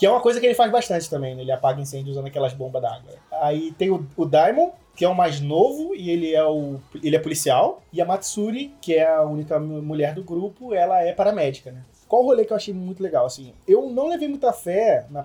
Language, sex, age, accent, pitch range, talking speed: Portuguese, male, 20-39, Brazilian, 140-200 Hz, 250 wpm